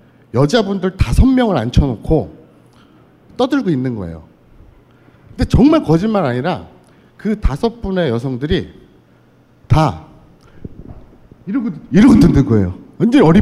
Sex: male